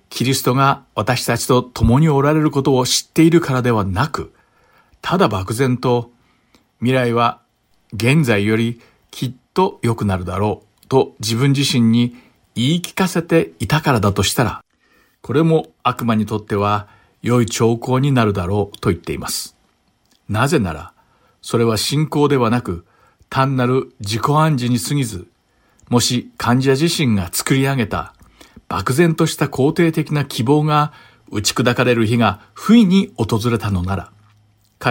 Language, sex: English, male